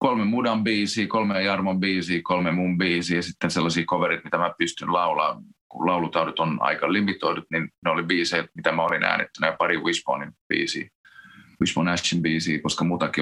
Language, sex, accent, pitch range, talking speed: Finnish, male, native, 85-105 Hz, 170 wpm